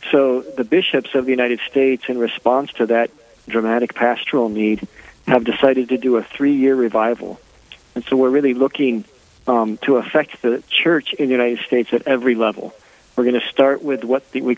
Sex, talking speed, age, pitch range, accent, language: male, 185 wpm, 40-59, 115-130 Hz, American, English